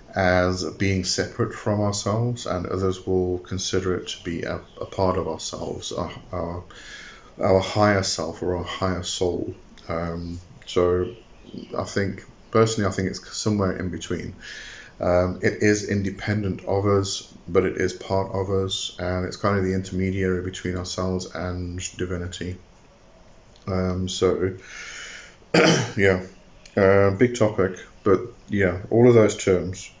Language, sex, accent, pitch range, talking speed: English, male, British, 90-100 Hz, 140 wpm